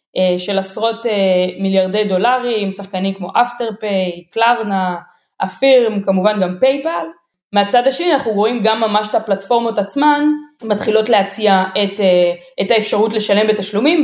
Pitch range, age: 195-245 Hz, 20-39